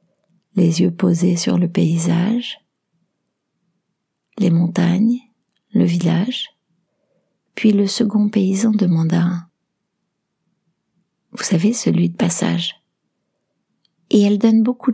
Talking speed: 95 wpm